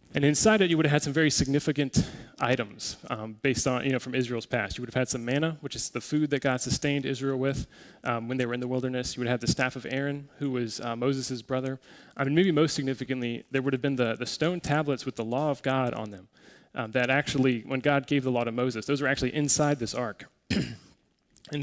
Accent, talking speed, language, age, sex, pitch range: American, 250 wpm, English, 20-39, male, 125-145 Hz